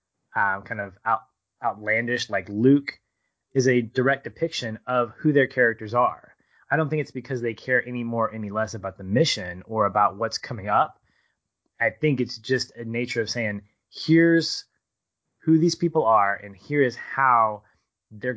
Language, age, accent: English, 30-49, American